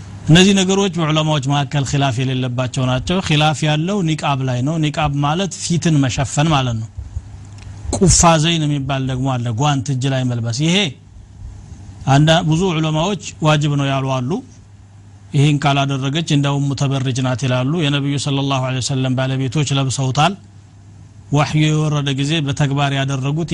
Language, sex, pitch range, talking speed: Amharic, male, 105-150 Hz, 90 wpm